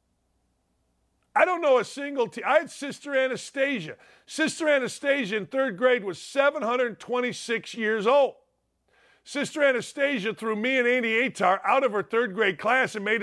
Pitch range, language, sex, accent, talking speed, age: 195-270 Hz, English, male, American, 155 wpm, 50-69